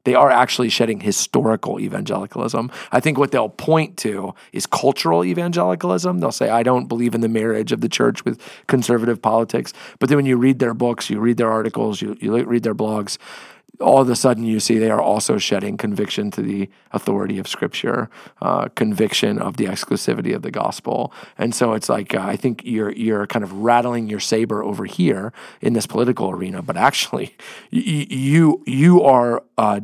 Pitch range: 110-130 Hz